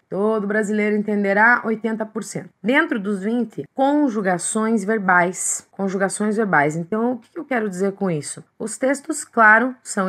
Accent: Brazilian